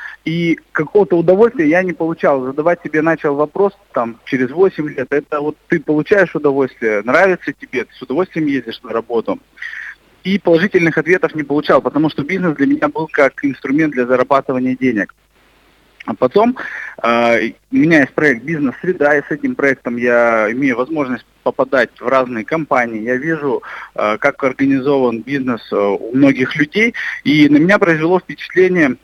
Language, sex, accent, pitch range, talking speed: Russian, male, native, 130-175 Hz, 155 wpm